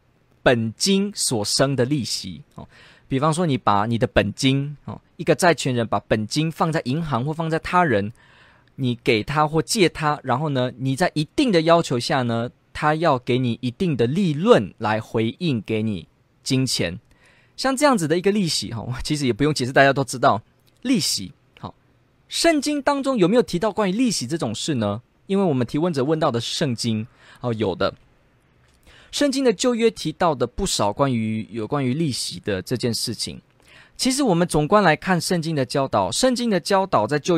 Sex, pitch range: male, 120-180 Hz